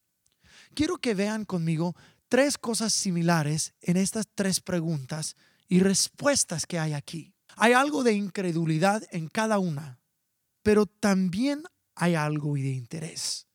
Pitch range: 155-220 Hz